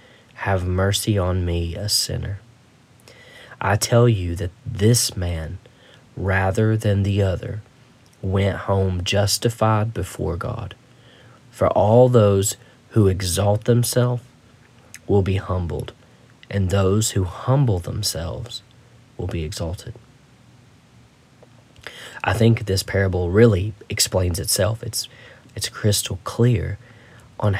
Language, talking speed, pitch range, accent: English, 110 wpm, 100-125 Hz, American